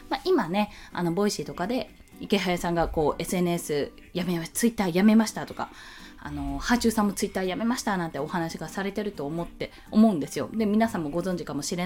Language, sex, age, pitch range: Japanese, female, 20-39, 175-260 Hz